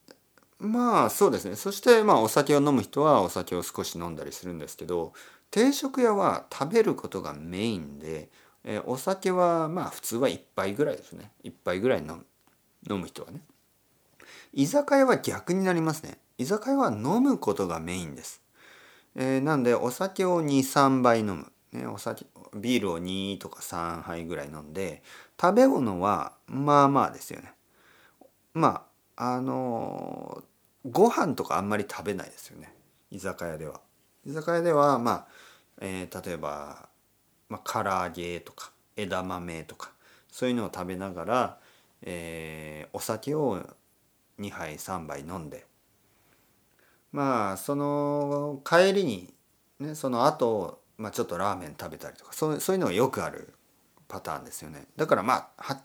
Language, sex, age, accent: Japanese, male, 40-59, native